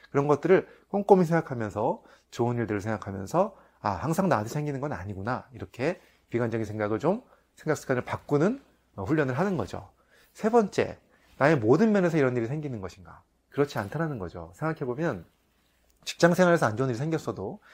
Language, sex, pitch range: Korean, male, 110-170 Hz